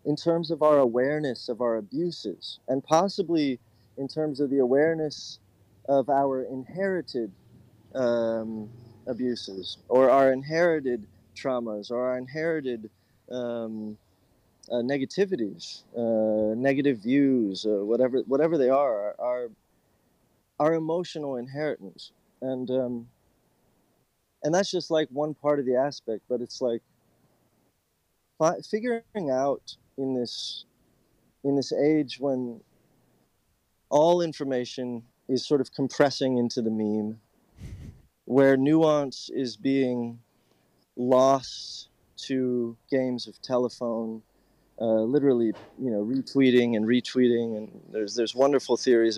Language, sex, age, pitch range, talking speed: English, male, 30-49, 115-140 Hz, 115 wpm